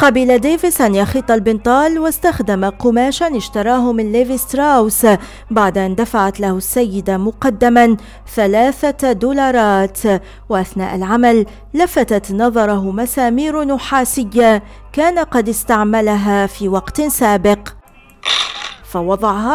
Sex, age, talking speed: female, 40-59, 95 wpm